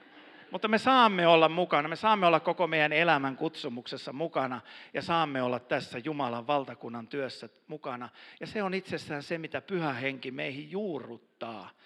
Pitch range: 125-170 Hz